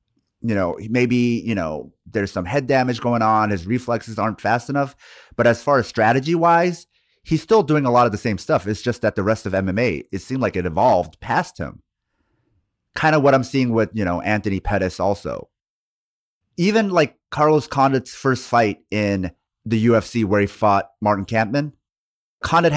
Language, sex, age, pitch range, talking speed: English, male, 30-49, 105-140 Hz, 185 wpm